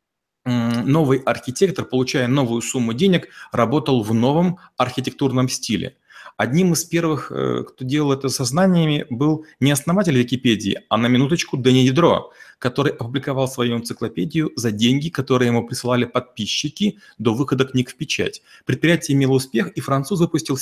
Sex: male